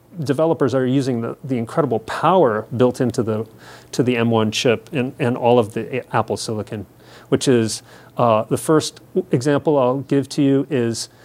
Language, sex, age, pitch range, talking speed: English, male, 40-59, 125-170 Hz, 170 wpm